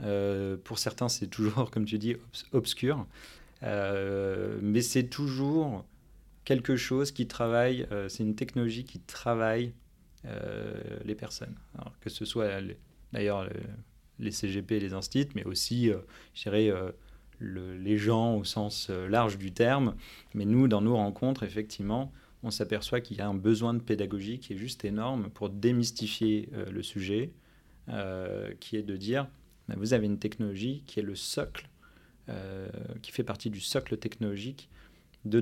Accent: French